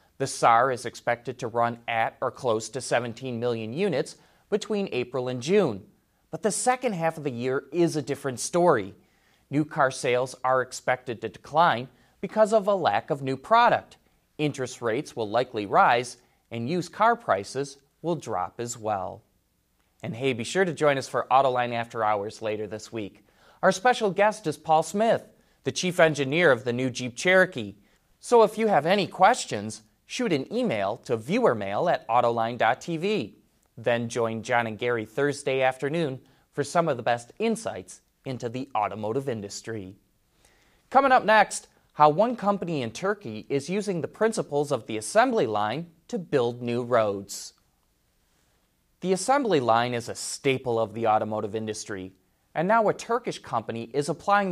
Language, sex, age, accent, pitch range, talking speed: English, male, 30-49, American, 115-175 Hz, 165 wpm